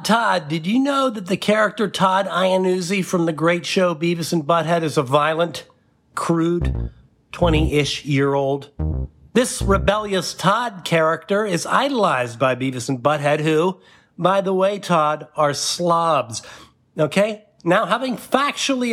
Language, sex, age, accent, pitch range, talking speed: English, male, 50-69, American, 160-200 Hz, 140 wpm